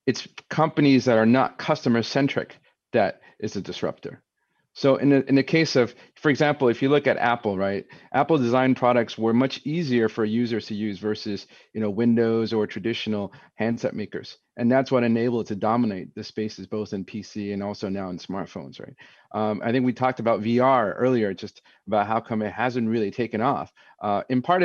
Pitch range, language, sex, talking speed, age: 105-125 Hz, English, male, 195 wpm, 40-59